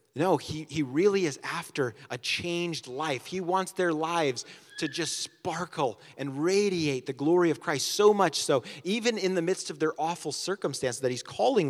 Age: 30-49